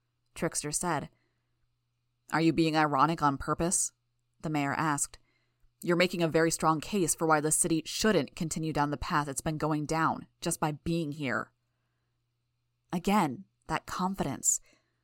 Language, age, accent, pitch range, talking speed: English, 20-39, American, 140-175 Hz, 150 wpm